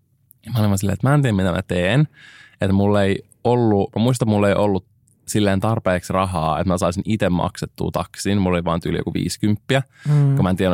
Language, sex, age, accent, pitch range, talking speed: Finnish, male, 20-39, native, 85-115 Hz, 205 wpm